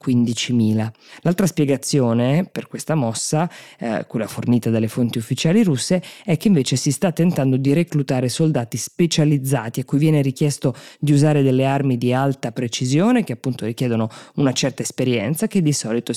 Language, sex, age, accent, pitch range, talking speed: Italian, female, 20-39, native, 125-155 Hz, 150 wpm